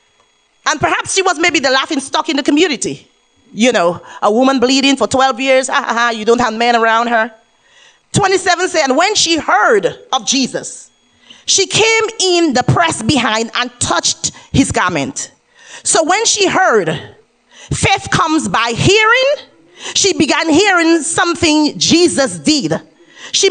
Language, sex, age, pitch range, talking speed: English, female, 30-49, 260-370 Hz, 150 wpm